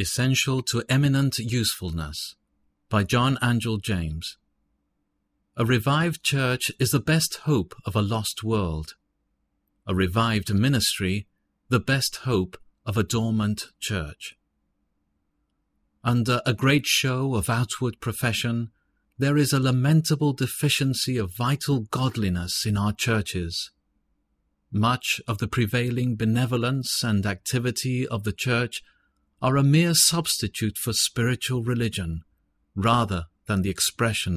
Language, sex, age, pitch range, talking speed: English, male, 40-59, 95-130 Hz, 120 wpm